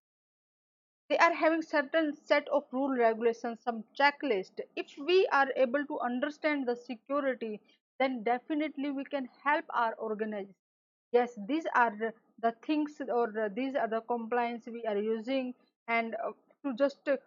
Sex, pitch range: female, 225-285 Hz